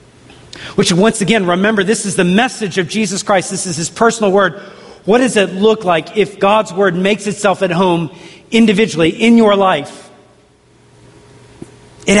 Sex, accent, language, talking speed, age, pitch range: male, American, English, 160 wpm, 40-59, 155-200 Hz